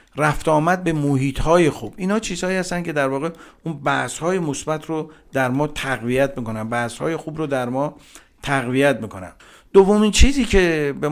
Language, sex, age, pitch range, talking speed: Persian, male, 50-69, 130-170 Hz, 165 wpm